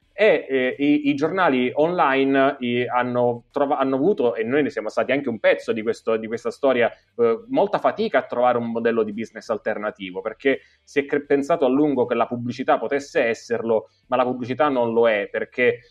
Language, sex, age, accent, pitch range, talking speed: Italian, male, 20-39, native, 115-150 Hz, 185 wpm